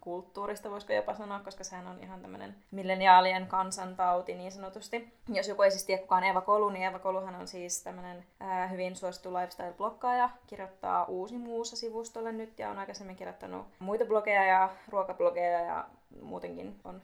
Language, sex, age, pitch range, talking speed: Finnish, female, 20-39, 175-195 Hz, 160 wpm